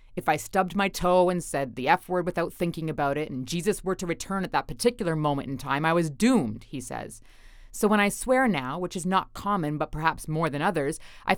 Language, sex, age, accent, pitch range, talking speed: English, female, 30-49, American, 140-195 Hz, 230 wpm